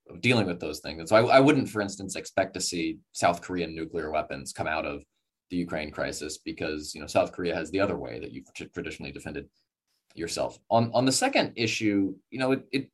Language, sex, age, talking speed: English, male, 20-39, 220 wpm